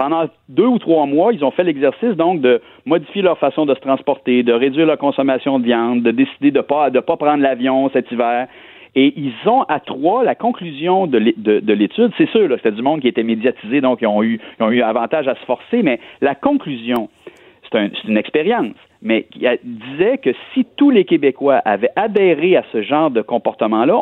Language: French